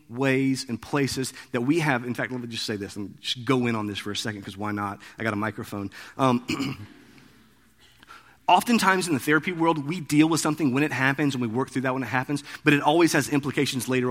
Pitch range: 130-175 Hz